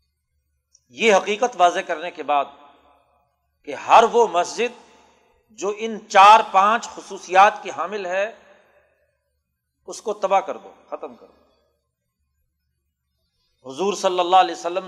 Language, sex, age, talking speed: Urdu, male, 50-69, 125 wpm